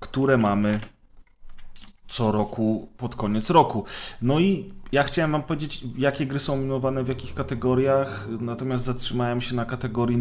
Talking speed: 145 wpm